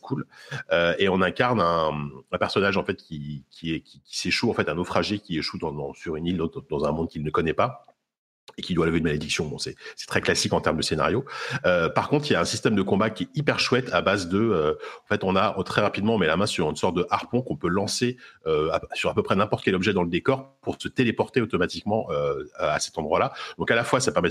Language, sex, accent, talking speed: French, male, French, 275 wpm